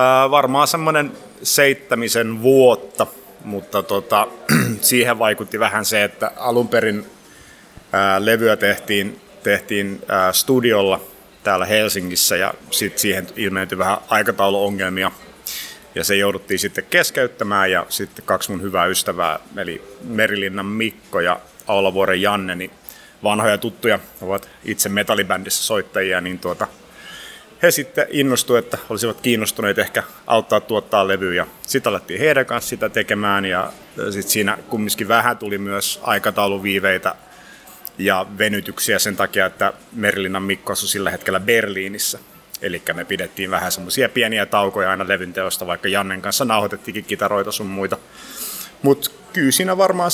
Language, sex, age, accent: Finnish, male, 30-49, native